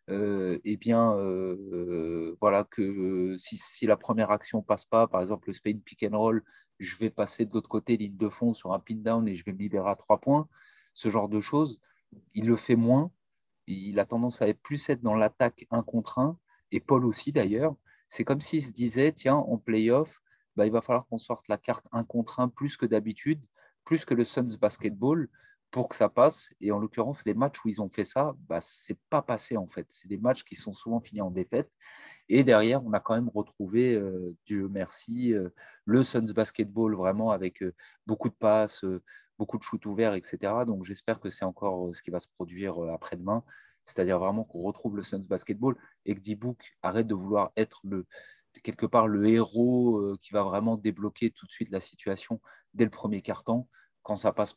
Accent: French